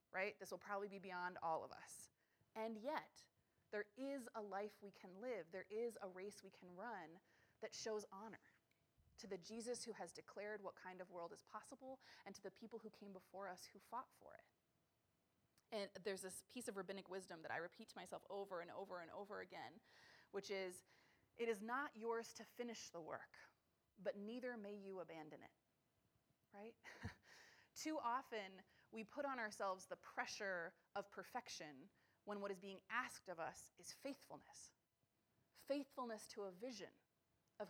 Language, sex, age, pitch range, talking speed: English, female, 30-49, 195-230 Hz, 175 wpm